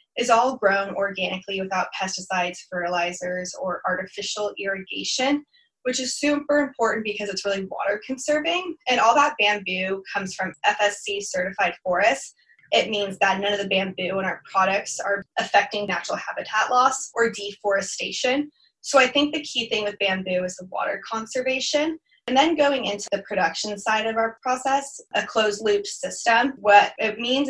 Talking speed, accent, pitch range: 160 wpm, American, 195-255 Hz